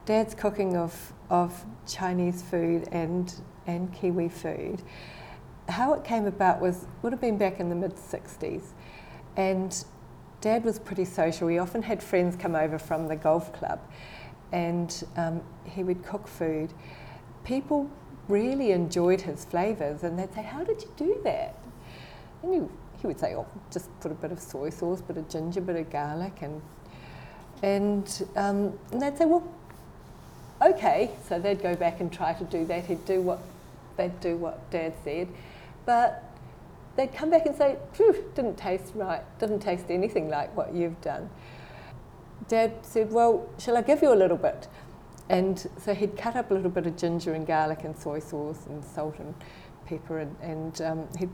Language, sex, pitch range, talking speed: English, female, 165-205 Hz, 175 wpm